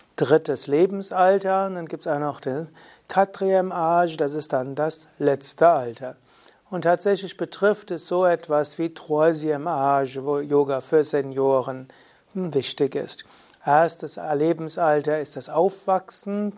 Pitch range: 145-175 Hz